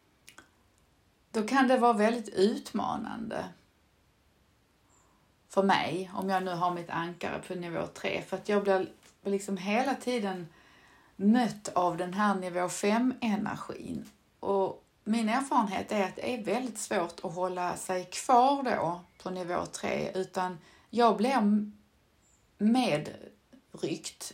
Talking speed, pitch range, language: 130 wpm, 175-215 Hz, Swedish